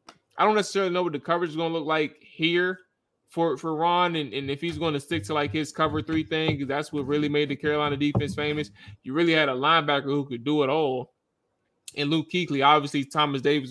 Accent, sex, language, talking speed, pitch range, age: American, male, English, 235 wpm, 135-165 Hz, 20-39